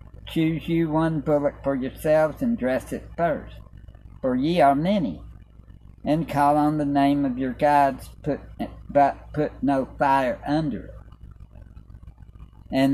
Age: 50-69